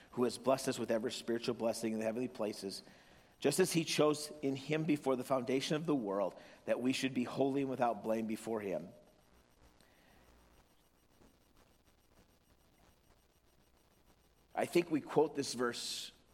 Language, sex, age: English, male, 40-59